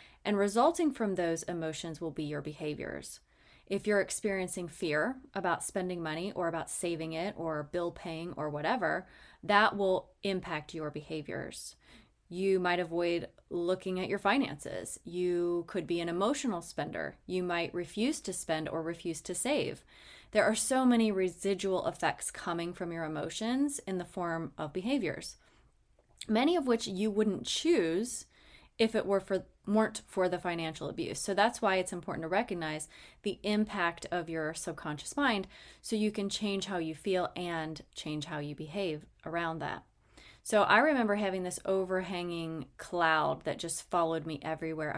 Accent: American